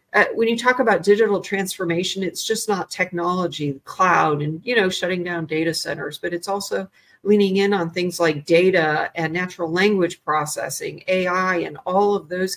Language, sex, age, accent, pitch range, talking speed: English, female, 40-59, American, 170-215 Hz, 180 wpm